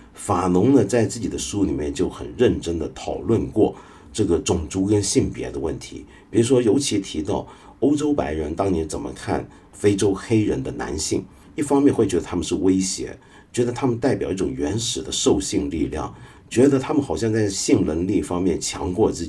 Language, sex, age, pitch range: Chinese, male, 50-69, 85-120 Hz